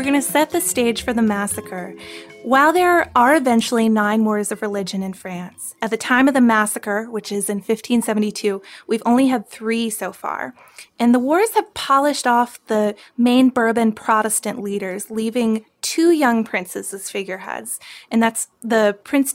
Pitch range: 210-255 Hz